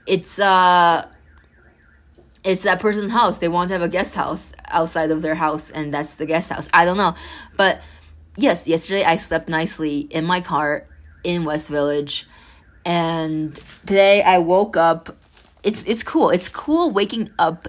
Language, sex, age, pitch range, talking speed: English, female, 20-39, 145-175 Hz, 165 wpm